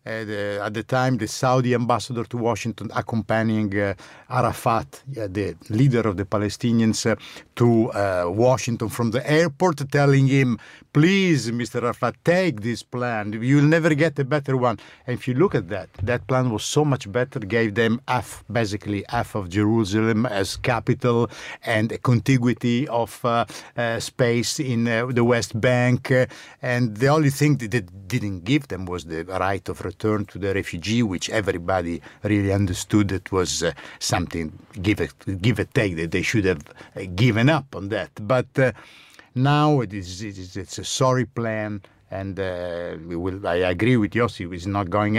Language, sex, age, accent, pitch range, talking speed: English, male, 50-69, Italian, 105-140 Hz, 175 wpm